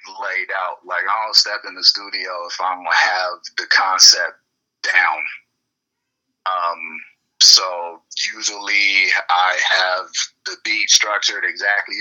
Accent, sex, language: American, male, English